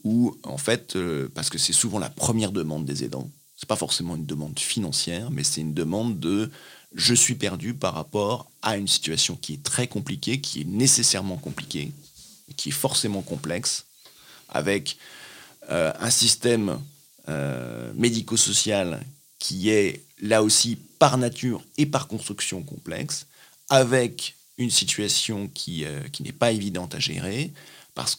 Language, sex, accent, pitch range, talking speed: French, male, French, 100-140 Hz, 155 wpm